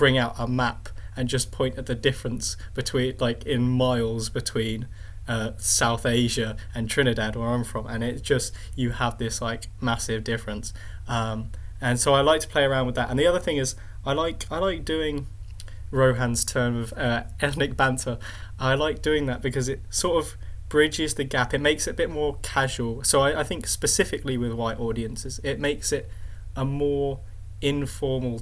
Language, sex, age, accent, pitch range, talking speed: English, male, 10-29, British, 110-130 Hz, 190 wpm